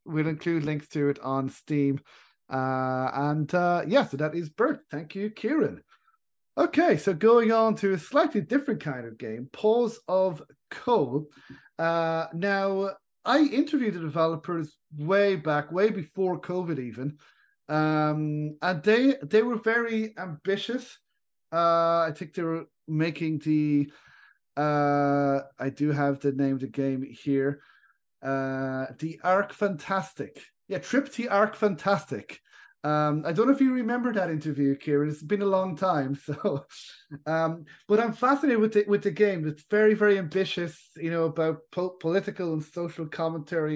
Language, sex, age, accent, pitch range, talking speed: English, male, 30-49, Irish, 150-205 Hz, 155 wpm